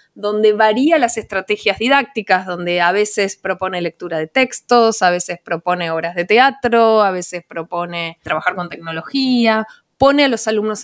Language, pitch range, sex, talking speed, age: Spanish, 175-230 Hz, female, 155 wpm, 20-39